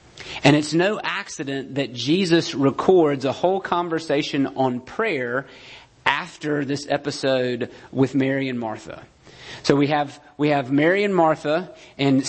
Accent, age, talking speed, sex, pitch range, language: American, 40-59, 135 wpm, male, 130-160 Hz, English